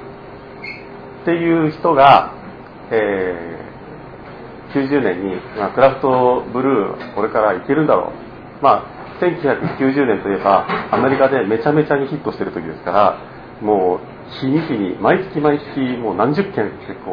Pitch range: 115-150 Hz